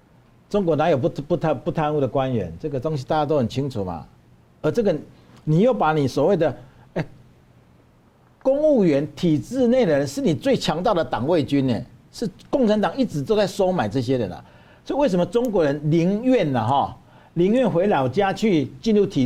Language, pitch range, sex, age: Chinese, 125-180 Hz, male, 50-69